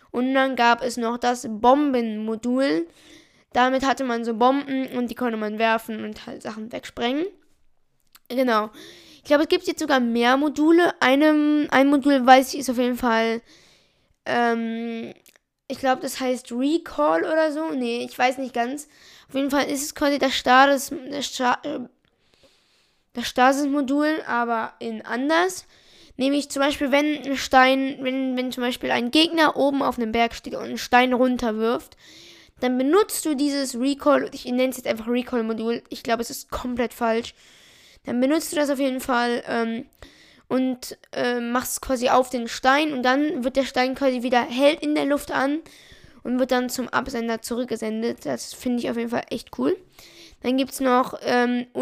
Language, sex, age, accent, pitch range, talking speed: German, female, 10-29, German, 240-285 Hz, 175 wpm